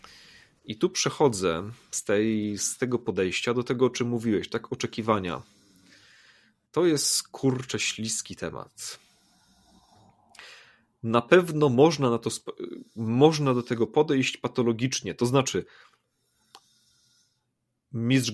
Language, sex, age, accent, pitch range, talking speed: Polish, male, 30-49, native, 110-130 Hz, 110 wpm